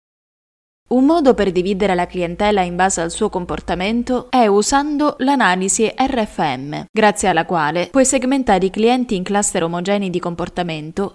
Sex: female